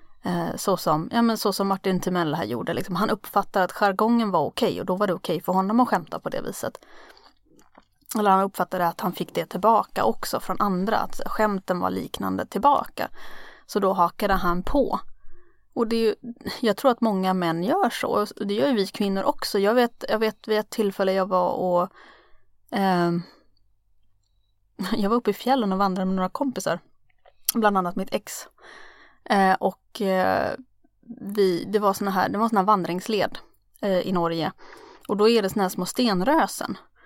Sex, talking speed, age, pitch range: female, 185 wpm, 30-49, 190-240 Hz